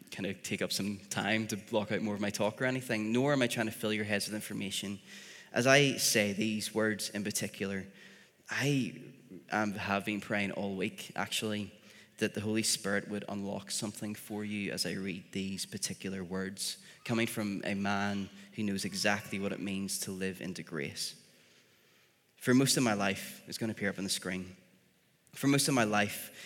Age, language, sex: 20-39, English, male